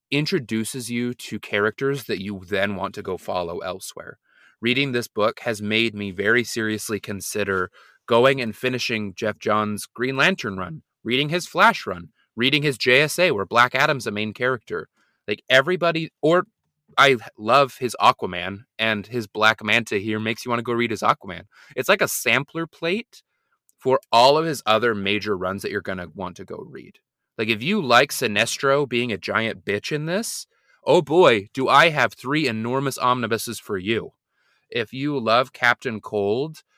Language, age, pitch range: English, 20-39, 110-145 Hz